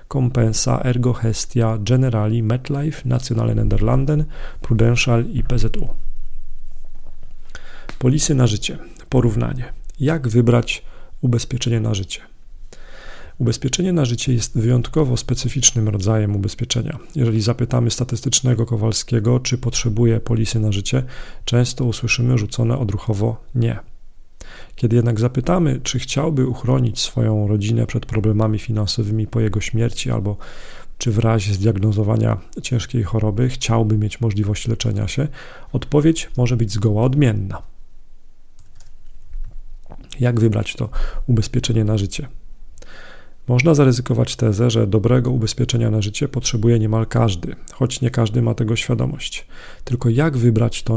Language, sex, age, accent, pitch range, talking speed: Polish, male, 40-59, native, 110-125 Hz, 115 wpm